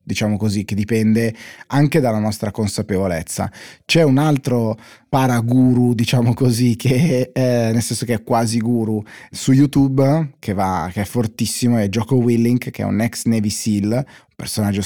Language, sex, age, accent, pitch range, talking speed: Italian, male, 30-49, native, 105-130 Hz, 160 wpm